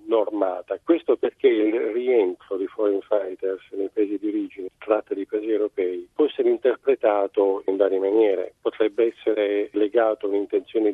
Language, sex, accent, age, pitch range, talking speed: Italian, male, native, 40-59, 310-425 Hz, 145 wpm